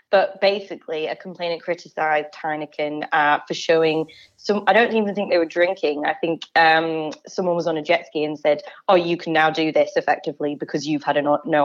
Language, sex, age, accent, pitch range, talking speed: English, female, 20-39, British, 150-180 Hz, 205 wpm